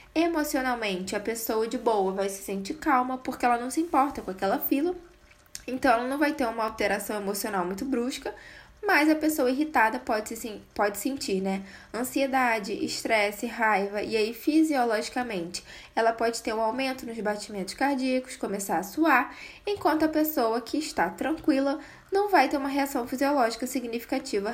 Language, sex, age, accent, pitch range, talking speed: Portuguese, female, 10-29, Brazilian, 215-280 Hz, 160 wpm